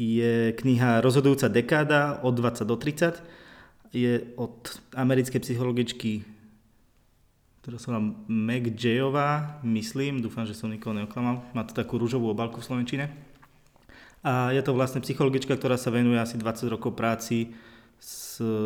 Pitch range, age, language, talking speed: 110-125 Hz, 20-39, Slovak, 140 wpm